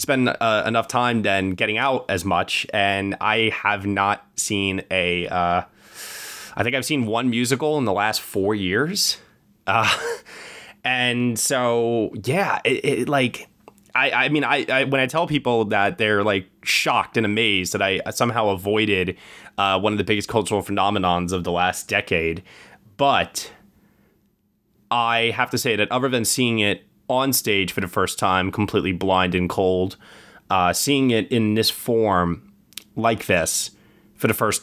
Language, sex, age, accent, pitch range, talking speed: English, male, 20-39, American, 95-125 Hz, 165 wpm